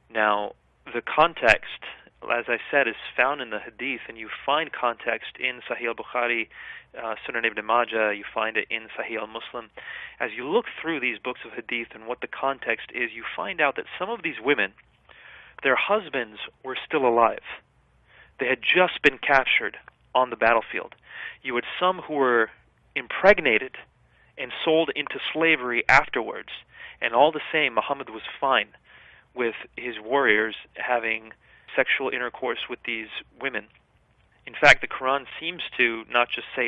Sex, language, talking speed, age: male, English, 160 wpm, 30-49